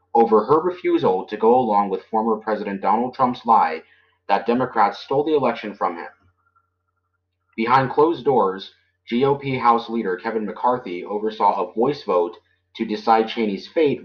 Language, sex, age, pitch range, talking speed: English, male, 30-49, 100-125 Hz, 150 wpm